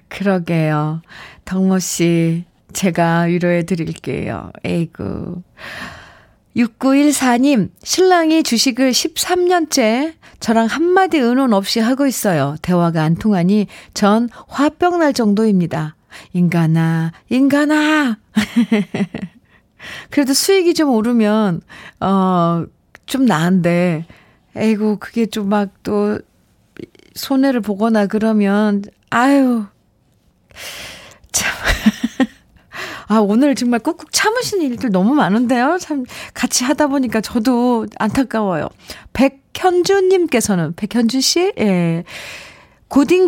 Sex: female